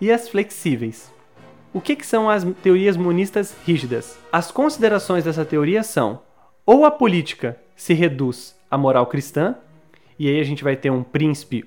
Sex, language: male, English